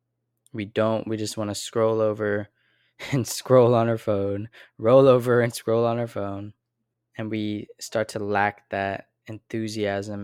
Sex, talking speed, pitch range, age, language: male, 160 wpm, 105-120 Hz, 10-29, English